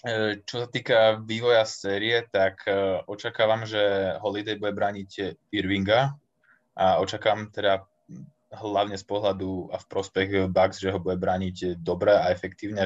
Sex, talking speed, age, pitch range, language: male, 135 wpm, 20-39, 95-105 Hz, Slovak